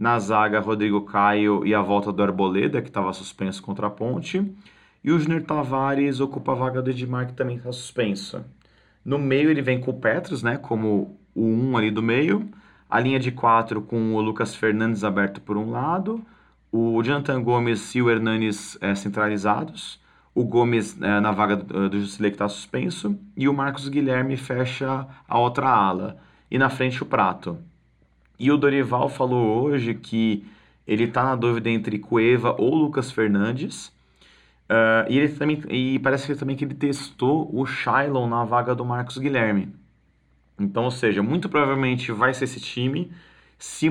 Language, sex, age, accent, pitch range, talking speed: Portuguese, male, 30-49, Brazilian, 110-135 Hz, 175 wpm